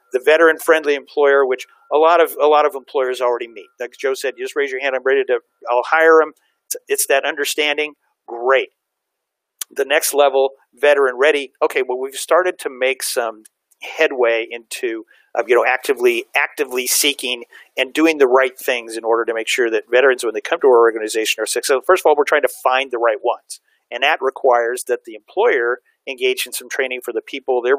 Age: 50-69